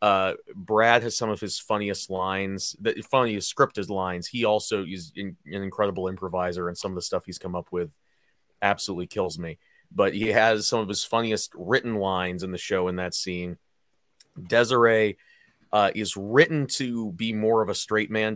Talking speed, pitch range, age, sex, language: 185 wpm, 95-110 Hz, 30-49, male, English